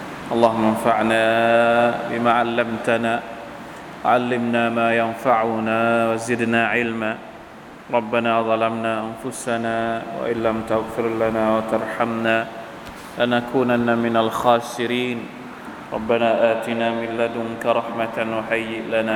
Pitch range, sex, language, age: 115-120 Hz, male, Thai, 20-39